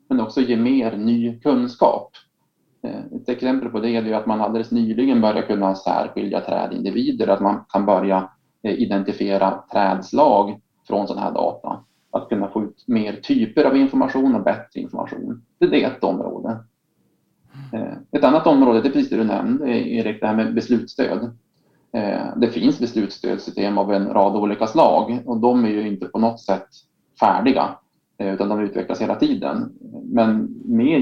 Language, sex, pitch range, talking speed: Swedish, male, 105-145 Hz, 155 wpm